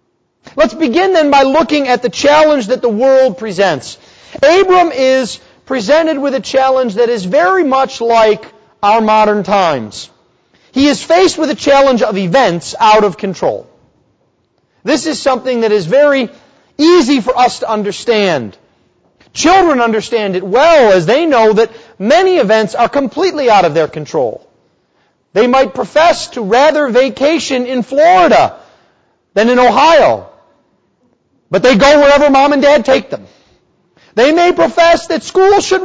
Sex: male